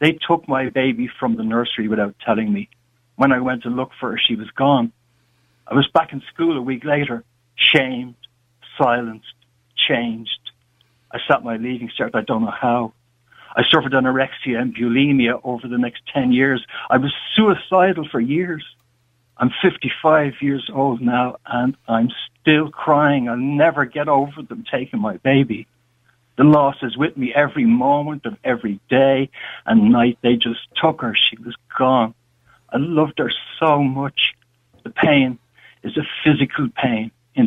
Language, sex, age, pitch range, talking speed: English, male, 60-79, 120-160 Hz, 165 wpm